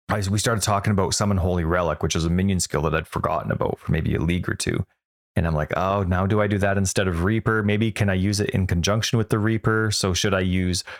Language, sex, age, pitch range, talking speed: English, male, 30-49, 90-120 Hz, 260 wpm